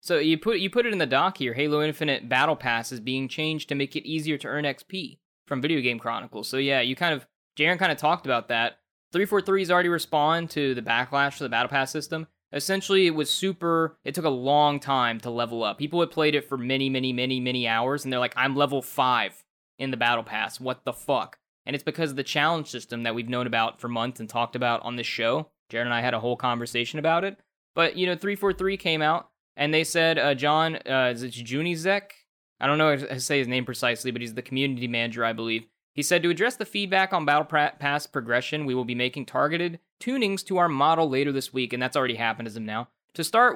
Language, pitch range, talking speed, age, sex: English, 125-165 Hz, 240 wpm, 20-39, male